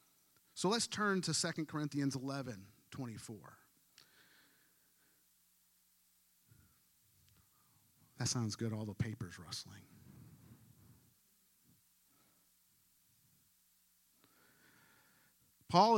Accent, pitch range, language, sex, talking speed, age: American, 120-155 Hz, English, male, 70 wpm, 40-59